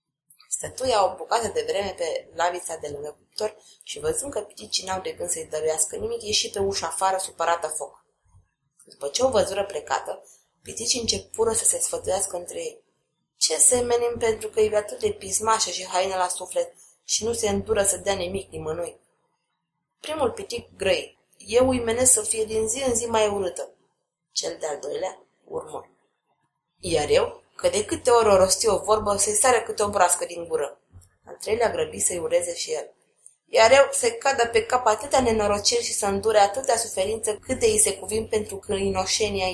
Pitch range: 190-305 Hz